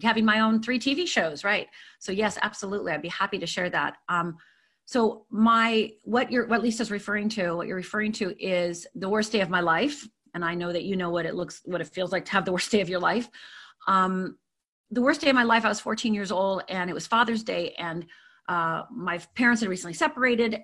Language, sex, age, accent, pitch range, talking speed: English, female, 40-59, American, 175-220 Hz, 235 wpm